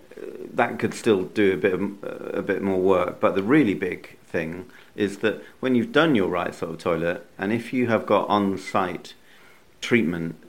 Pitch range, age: 85-95 Hz, 40-59